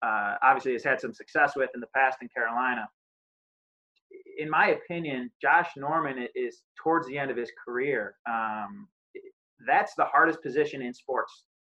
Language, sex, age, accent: English, male, 30-49, American